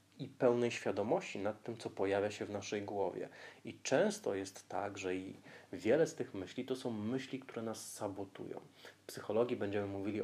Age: 30-49